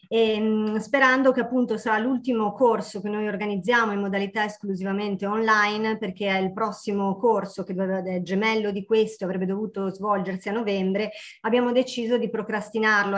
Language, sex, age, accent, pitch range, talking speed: Italian, female, 30-49, native, 195-225 Hz, 150 wpm